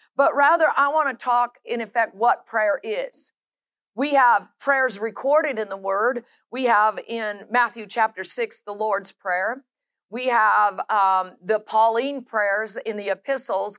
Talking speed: 155 wpm